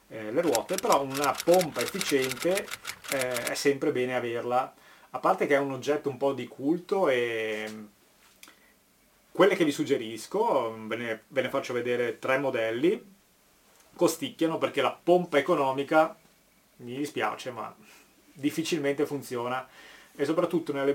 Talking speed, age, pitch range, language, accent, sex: 125 wpm, 30-49, 120-155 Hz, Italian, native, male